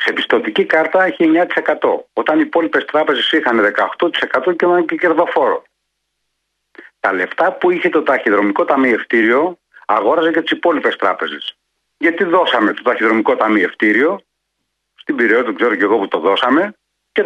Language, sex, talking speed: Greek, male, 155 wpm